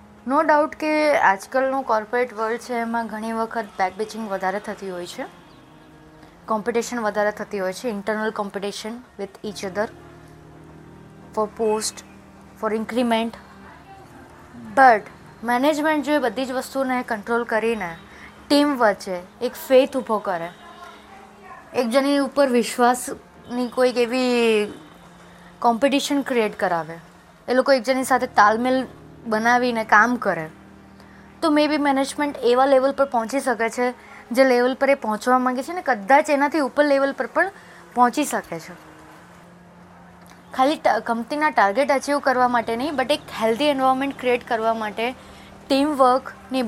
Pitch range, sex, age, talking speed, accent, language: 215-265 Hz, female, 20-39, 130 wpm, native, Gujarati